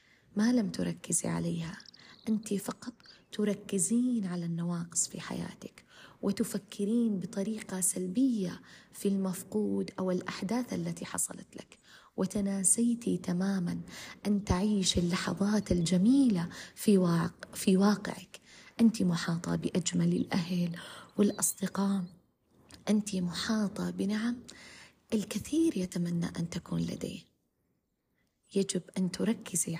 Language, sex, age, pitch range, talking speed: Arabic, female, 30-49, 175-210 Hz, 90 wpm